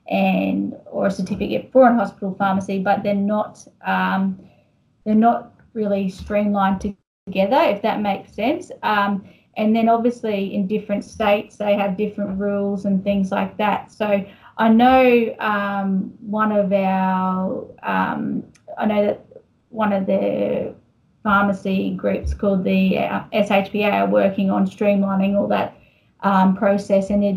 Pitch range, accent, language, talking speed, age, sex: 195-215 Hz, Australian, English, 140 wpm, 20-39, female